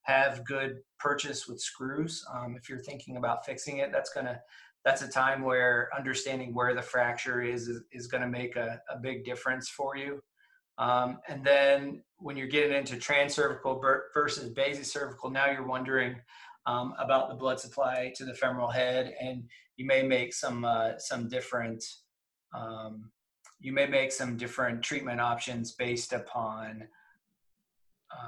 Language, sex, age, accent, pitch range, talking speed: English, male, 20-39, American, 120-135 Hz, 155 wpm